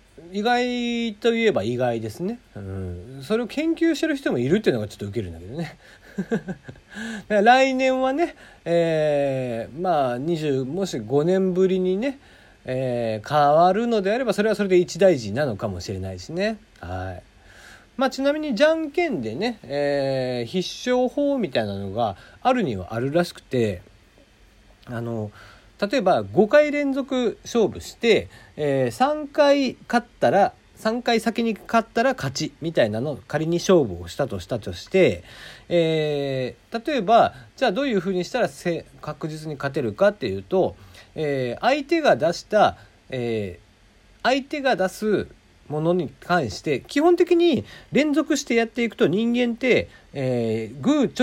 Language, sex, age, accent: Japanese, male, 40-59, native